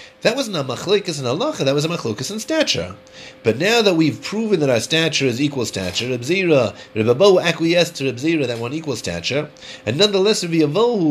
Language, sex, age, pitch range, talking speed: English, male, 30-49, 120-175 Hz, 200 wpm